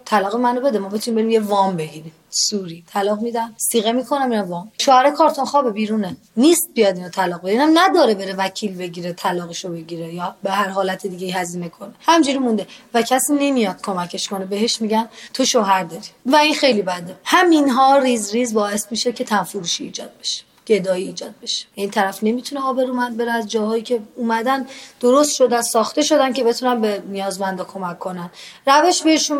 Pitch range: 200-260 Hz